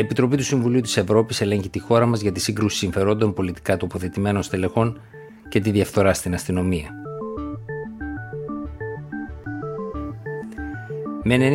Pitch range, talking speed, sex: 95-115 Hz, 120 wpm, male